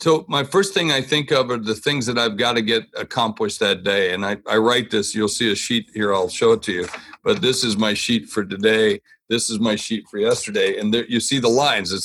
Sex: male